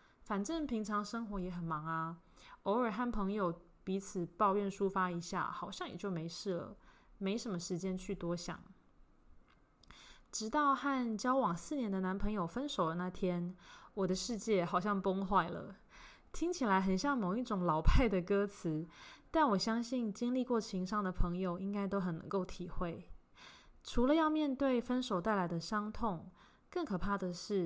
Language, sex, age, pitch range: English, female, 20-39, 180-230 Hz